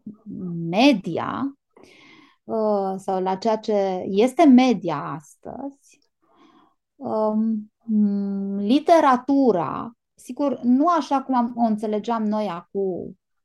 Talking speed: 75 wpm